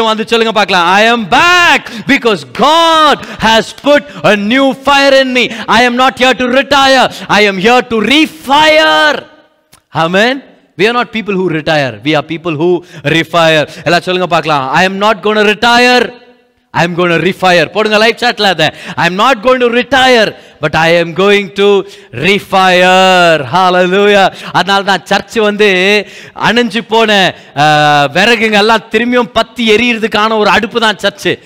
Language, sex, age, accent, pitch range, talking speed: Tamil, male, 30-49, native, 195-260 Hz, 155 wpm